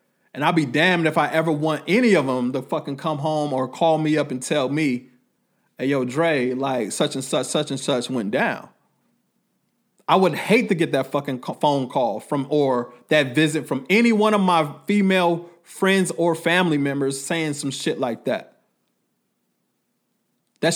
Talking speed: 180 wpm